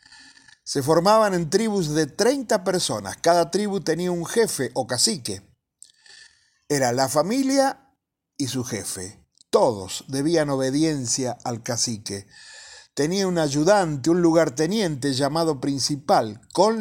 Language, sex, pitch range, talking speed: Spanish, male, 135-185 Hz, 120 wpm